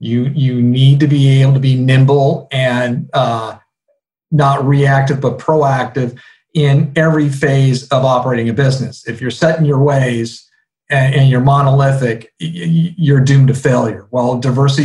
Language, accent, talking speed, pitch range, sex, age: English, American, 155 wpm, 130-155 Hz, male, 40-59